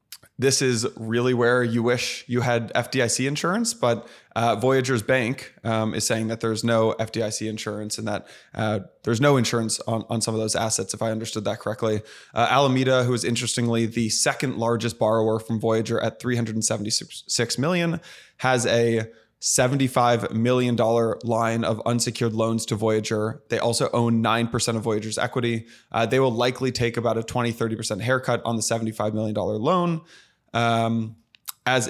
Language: English